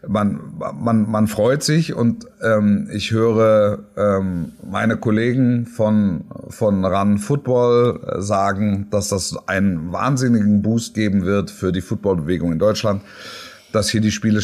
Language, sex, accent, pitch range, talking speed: German, male, German, 115-170 Hz, 135 wpm